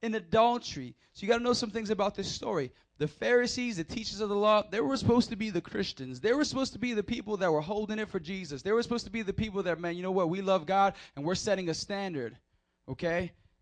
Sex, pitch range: male, 185-255 Hz